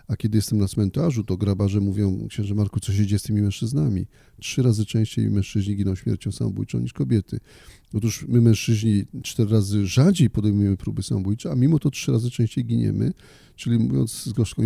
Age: 40-59